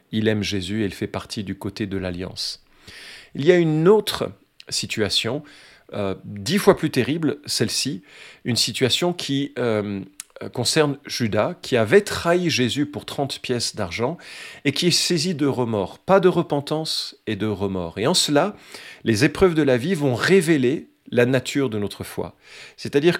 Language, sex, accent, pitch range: French, male, French, 110-155 Hz